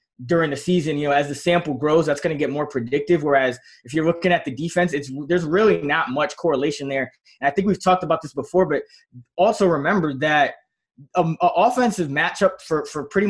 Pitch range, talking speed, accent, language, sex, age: 140-175 Hz, 210 wpm, American, English, male, 20-39